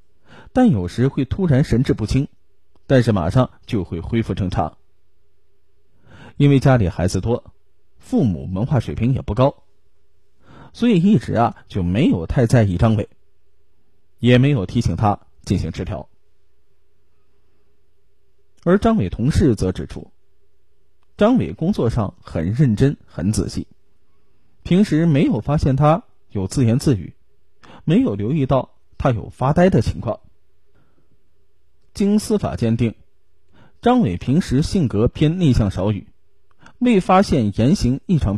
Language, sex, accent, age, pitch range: Chinese, male, native, 20-39, 95-135 Hz